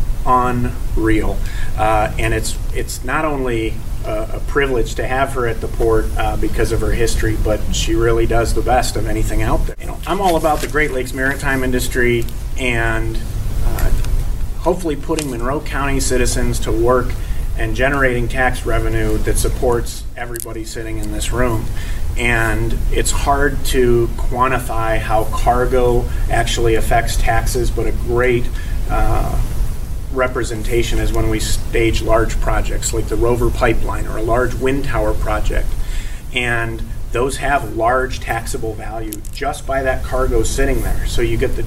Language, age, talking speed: English, 40-59, 155 wpm